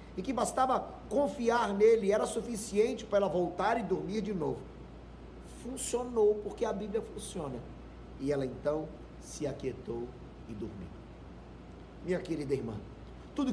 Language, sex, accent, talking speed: Portuguese, male, Brazilian, 135 wpm